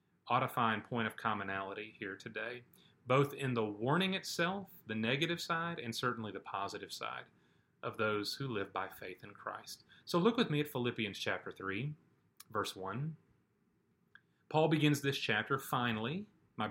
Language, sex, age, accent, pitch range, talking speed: English, male, 30-49, American, 115-160 Hz, 155 wpm